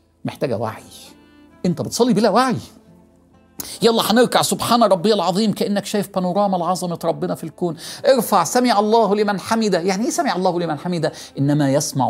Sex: male